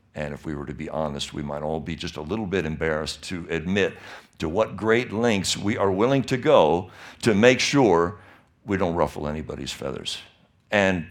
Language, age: English, 60-79